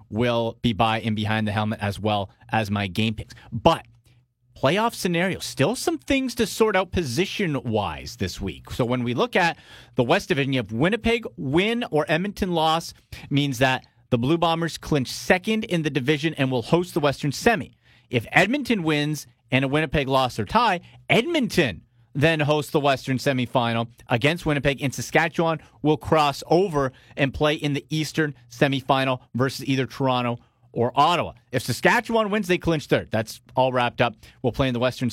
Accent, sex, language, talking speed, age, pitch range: American, male, English, 180 wpm, 30-49, 120-165 Hz